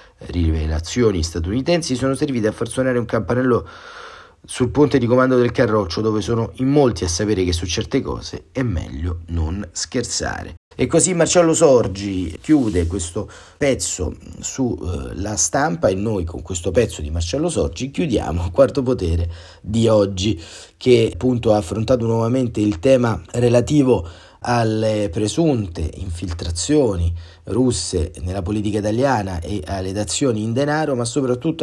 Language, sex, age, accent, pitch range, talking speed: Italian, male, 40-59, native, 90-125 Hz, 140 wpm